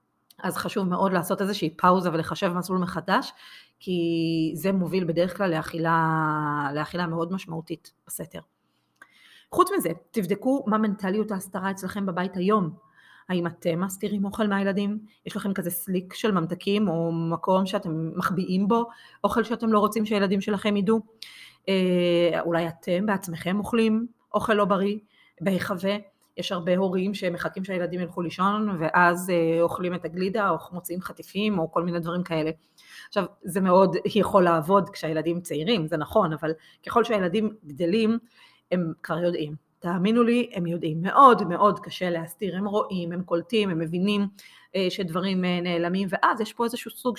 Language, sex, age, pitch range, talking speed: Hebrew, female, 30-49, 170-205 Hz, 145 wpm